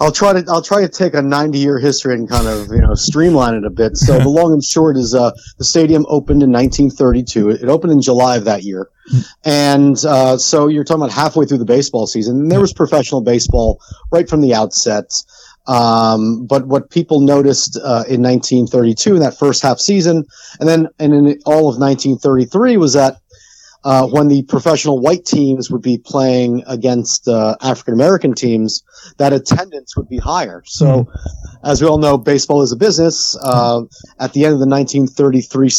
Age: 30-49